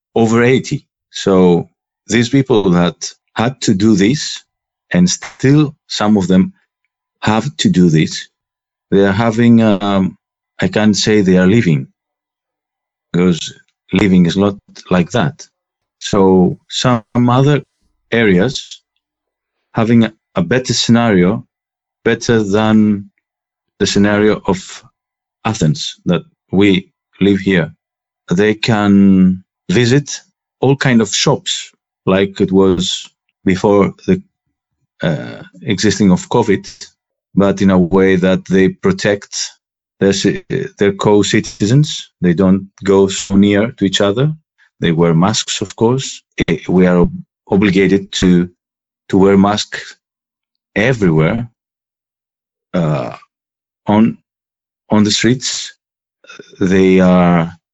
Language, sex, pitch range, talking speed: Czech, male, 95-115 Hz, 115 wpm